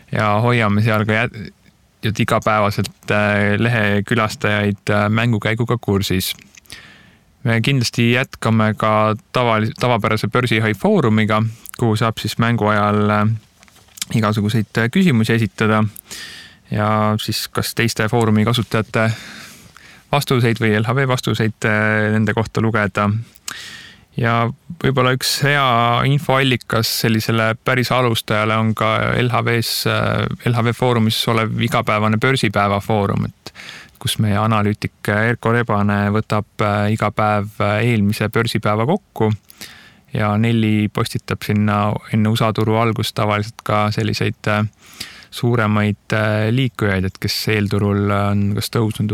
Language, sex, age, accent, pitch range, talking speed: English, male, 30-49, Finnish, 105-115 Hz, 100 wpm